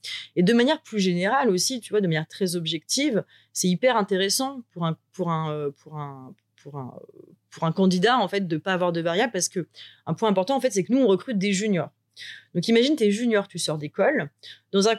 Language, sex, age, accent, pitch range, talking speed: French, female, 30-49, French, 165-220 Hz, 190 wpm